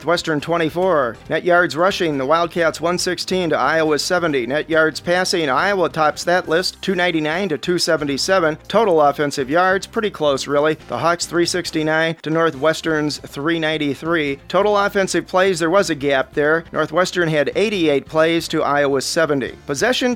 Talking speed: 145 wpm